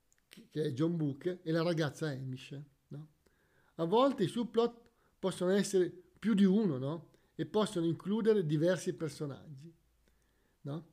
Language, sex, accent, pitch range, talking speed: Italian, male, native, 150-200 Hz, 135 wpm